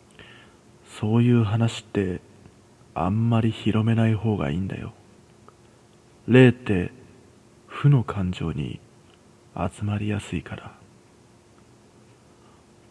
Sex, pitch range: male, 100-120 Hz